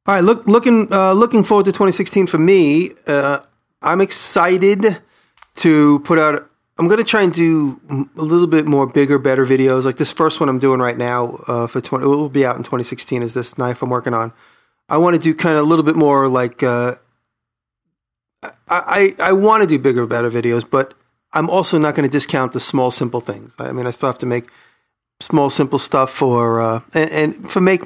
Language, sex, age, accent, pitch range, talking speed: English, male, 40-59, American, 120-160 Hz, 220 wpm